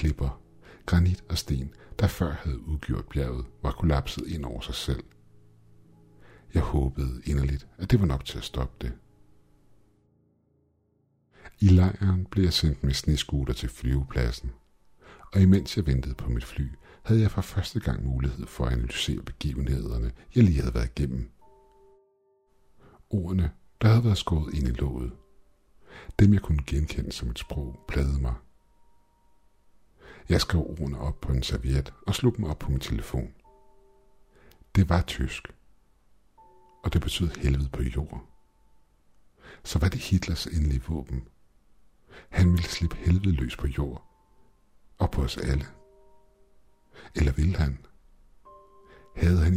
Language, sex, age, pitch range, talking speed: Danish, male, 60-79, 65-90 Hz, 145 wpm